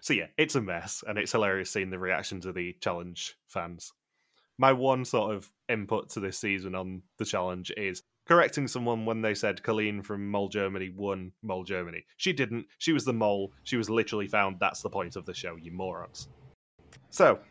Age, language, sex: 20-39, English, male